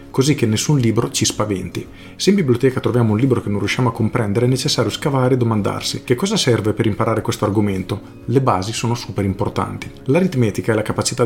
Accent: native